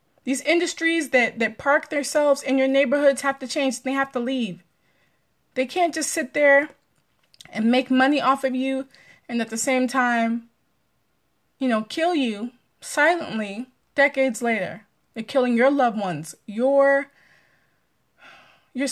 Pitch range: 225-275 Hz